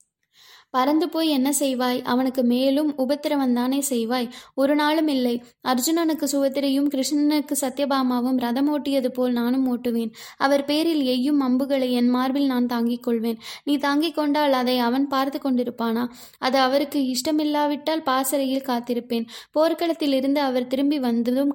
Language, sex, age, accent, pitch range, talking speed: Tamil, female, 20-39, native, 245-280 Hz, 125 wpm